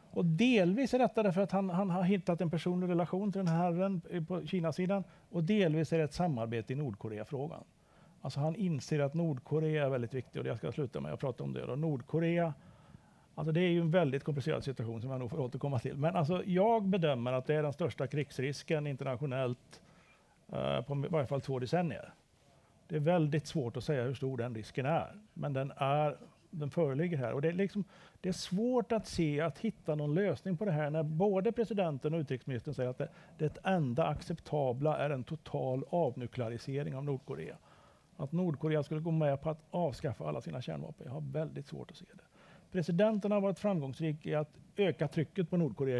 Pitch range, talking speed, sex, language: 140-175 Hz, 205 wpm, male, Swedish